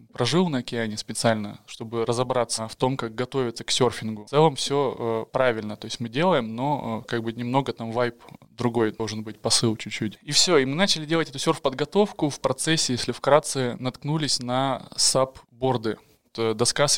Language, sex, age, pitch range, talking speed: Russian, male, 20-39, 115-140 Hz, 180 wpm